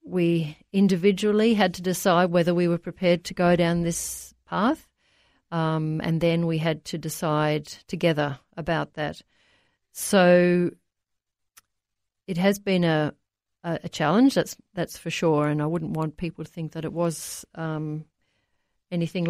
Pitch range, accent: 155-180 Hz, Australian